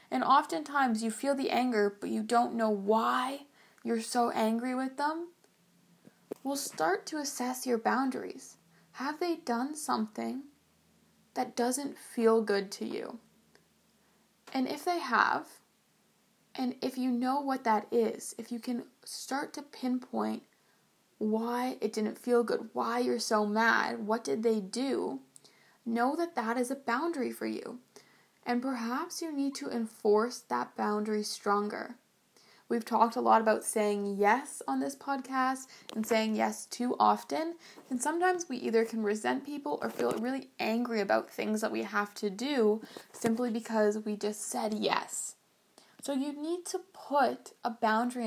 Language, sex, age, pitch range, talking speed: English, female, 20-39, 215-270 Hz, 155 wpm